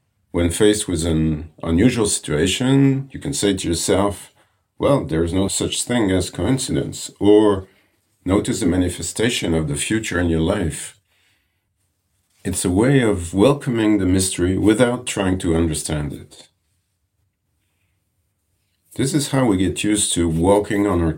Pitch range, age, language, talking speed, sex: 85-105 Hz, 50-69, English, 145 wpm, male